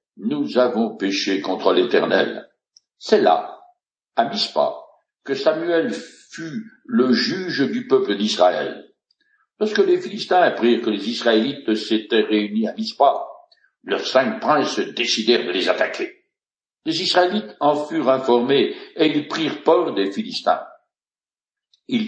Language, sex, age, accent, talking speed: French, male, 60-79, French, 130 wpm